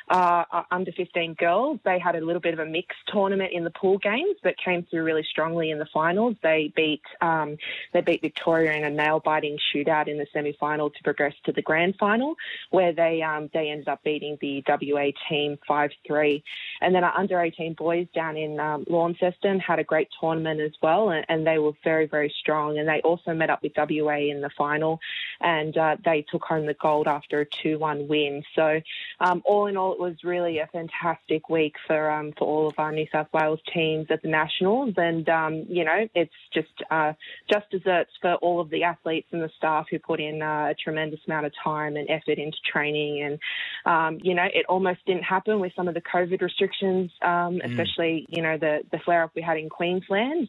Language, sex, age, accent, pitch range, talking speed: English, female, 20-39, Australian, 155-175 Hz, 215 wpm